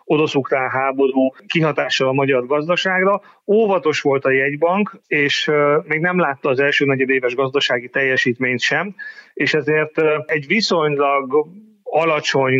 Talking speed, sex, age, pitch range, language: 120 wpm, male, 30-49, 135-165 Hz, Hungarian